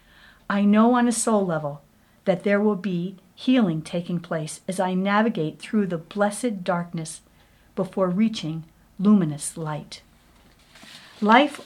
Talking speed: 130 wpm